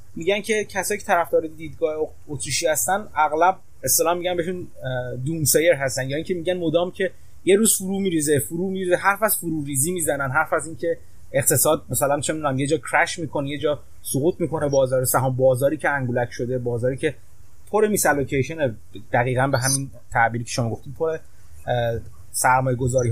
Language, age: Persian, 30-49